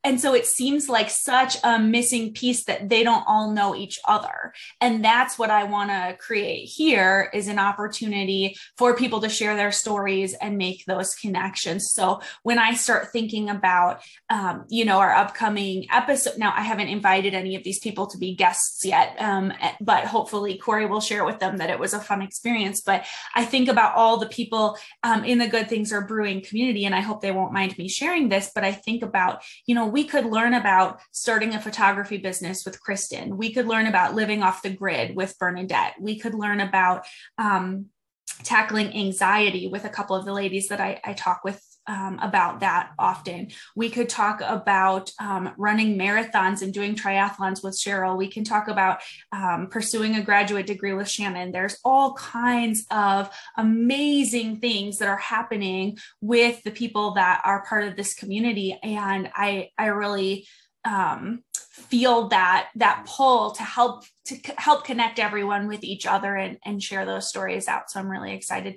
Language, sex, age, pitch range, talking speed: English, female, 20-39, 195-225 Hz, 190 wpm